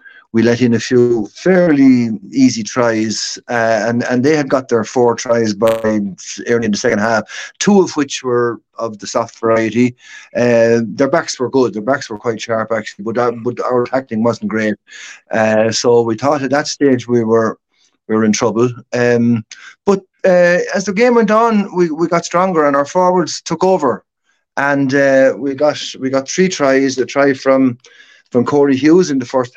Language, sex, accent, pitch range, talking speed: English, male, Irish, 115-155 Hz, 195 wpm